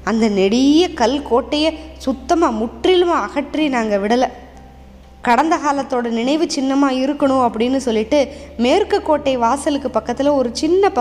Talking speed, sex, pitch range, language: 120 wpm, female, 220-285 Hz, Tamil